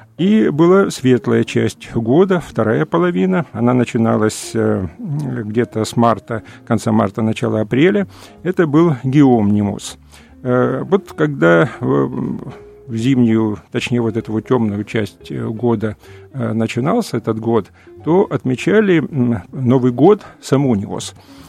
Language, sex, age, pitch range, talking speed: Russian, male, 50-69, 115-150 Hz, 105 wpm